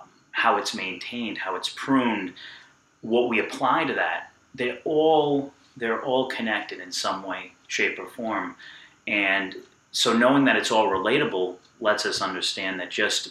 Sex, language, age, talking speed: male, English, 30-49, 150 wpm